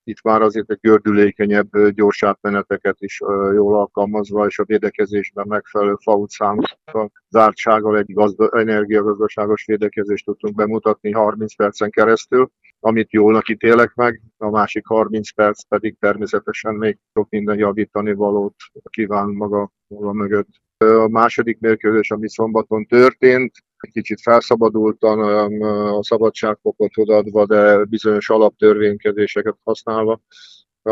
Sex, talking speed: male, 115 wpm